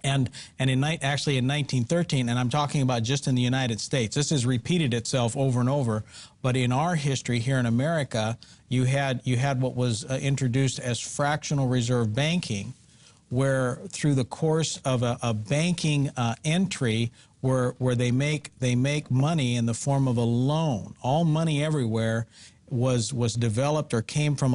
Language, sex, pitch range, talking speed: English, male, 120-145 Hz, 175 wpm